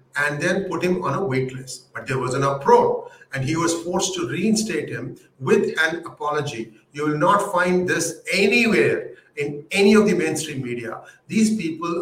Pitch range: 135-185 Hz